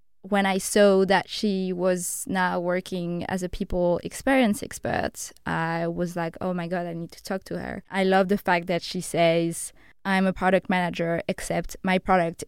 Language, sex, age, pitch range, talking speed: English, female, 20-39, 175-210 Hz, 190 wpm